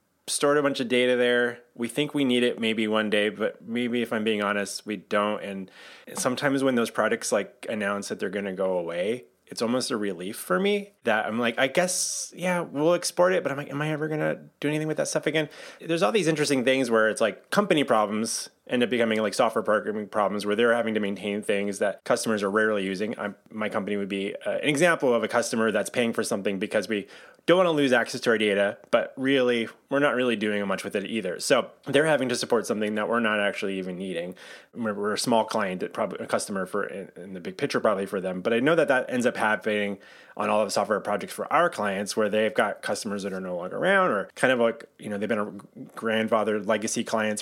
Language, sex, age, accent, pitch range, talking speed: English, male, 20-39, American, 100-135 Hz, 240 wpm